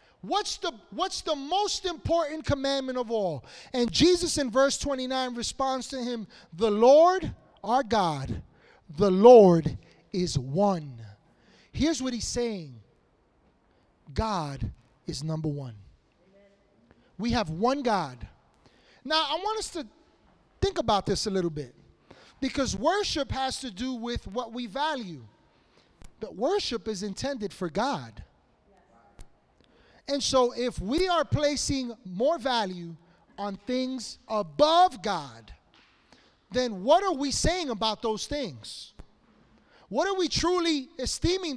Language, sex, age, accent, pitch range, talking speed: English, male, 30-49, American, 200-305 Hz, 125 wpm